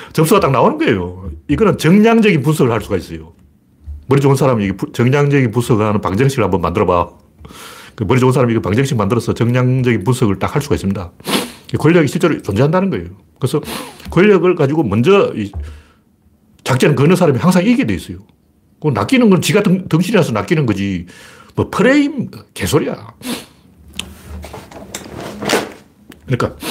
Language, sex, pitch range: Korean, male, 105-175 Hz